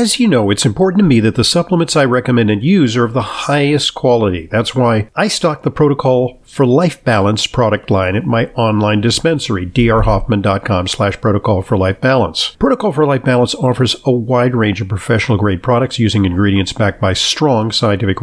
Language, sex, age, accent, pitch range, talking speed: English, male, 50-69, American, 110-145 Hz, 190 wpm